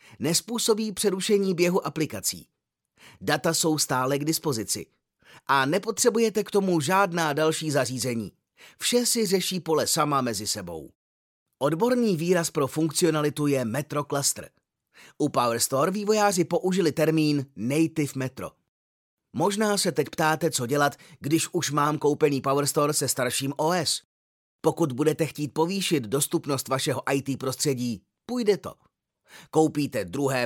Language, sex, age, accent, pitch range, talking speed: Czech, male, 30-49, native, 135-185 Hz, 125 wpm